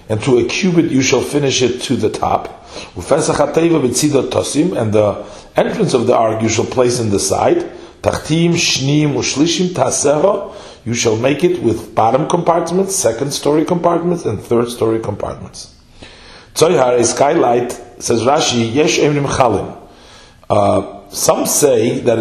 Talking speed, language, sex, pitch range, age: 120 wpm, English, male, 110-150 Hz, 40-59